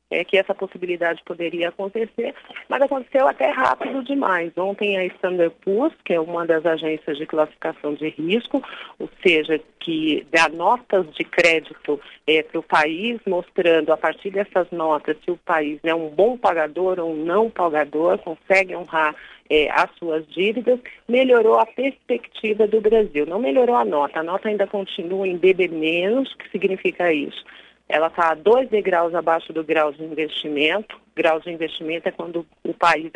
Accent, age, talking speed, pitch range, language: Brazilian, 40-59, 170 wpm, 160-195 Hz, Portuguese